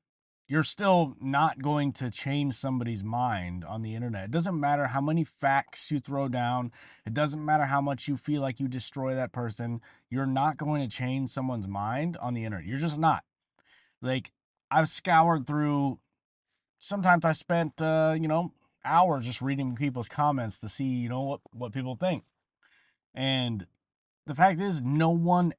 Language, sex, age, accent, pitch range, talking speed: English, male, 30-49, American, 120-155 Hz, 175 wpm